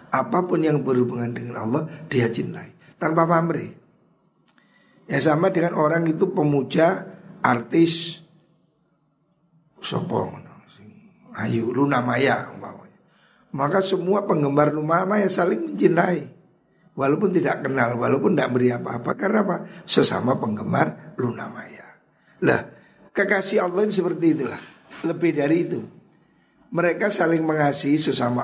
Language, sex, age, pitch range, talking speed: Indonesian, male, 50-69, 125-170 Hz, 110 wpm